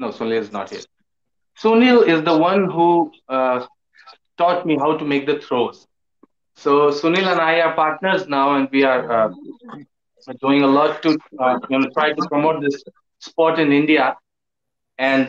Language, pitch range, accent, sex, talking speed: English, 135-165 Hz, Indian, male, 165 wpm